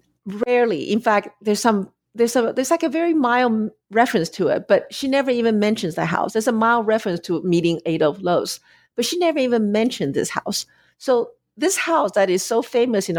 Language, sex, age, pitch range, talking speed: English, female, 50-69, 185-270 Hz, 205 wpm